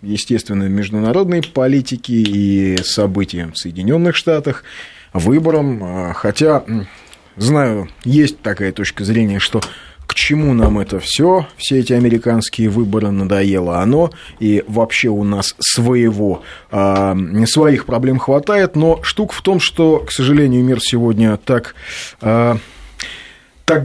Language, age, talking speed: Russian, 20-39, 115 wpm